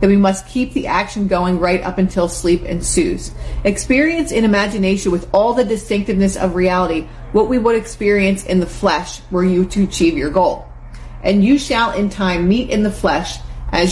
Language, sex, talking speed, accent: English, female, 190 wpm, American